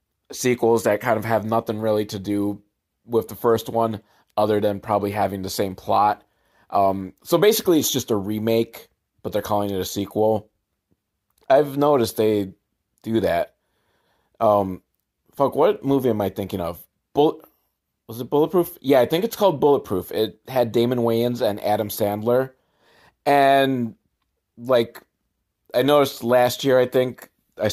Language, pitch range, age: English, 100-135 Hz, 30-49